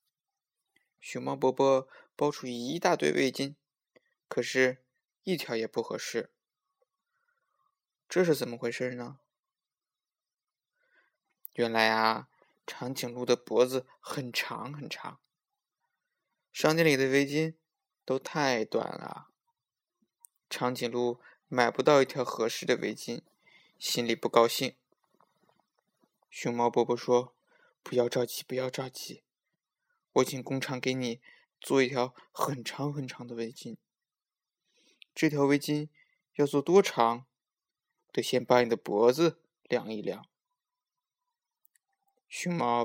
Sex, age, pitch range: male, 20-39, 120-170 Hz